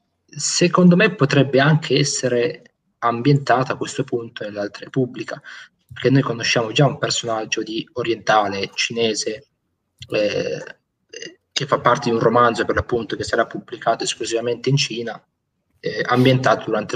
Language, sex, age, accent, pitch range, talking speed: Italian, male, 20-39, native, 120-145 Hz, 135 wpm